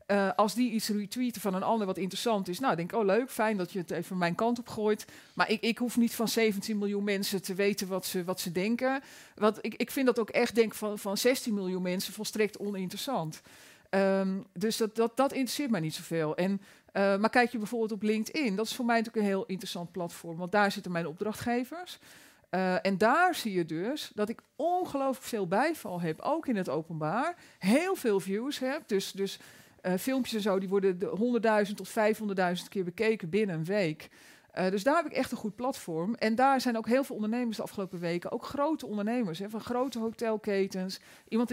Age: 40-59